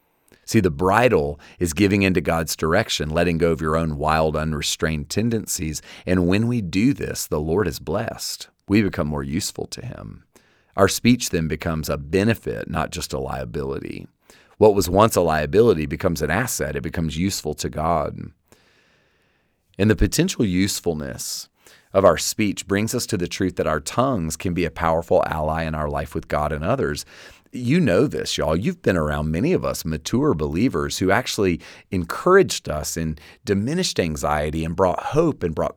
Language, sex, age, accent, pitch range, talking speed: English, male, 40-59, American, 75-100 Hz, 175 wpm